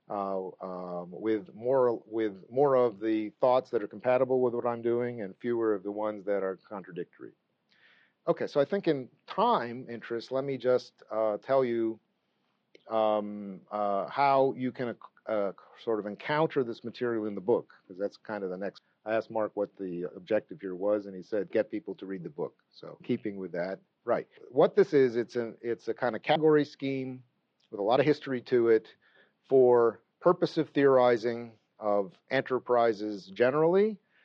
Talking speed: 185 wpm